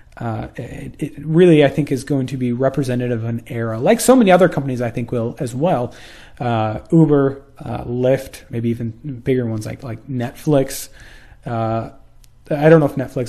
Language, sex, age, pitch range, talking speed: English, male, 30-49, 115-140 Hz, 185 wpm